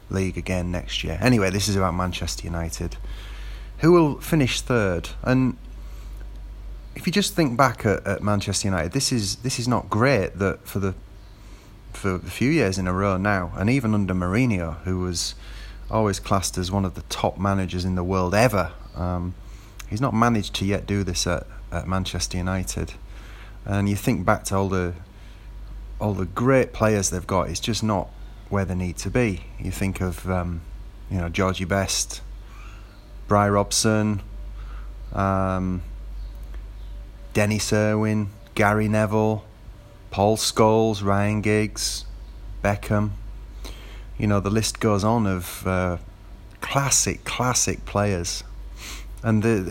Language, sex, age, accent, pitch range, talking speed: English, male, 30-49, British, 95-110 Hz, 150 wpm